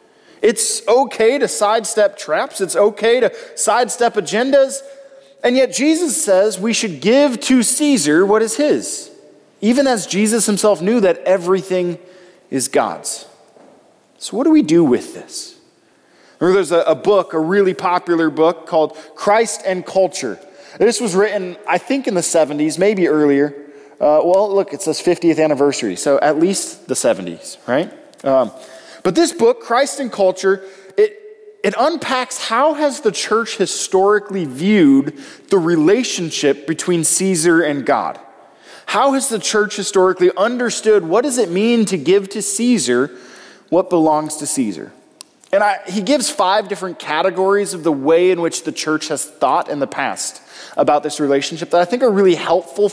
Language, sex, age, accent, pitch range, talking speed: English, male, 20-39, American, 170-255 Hz, 160 wpm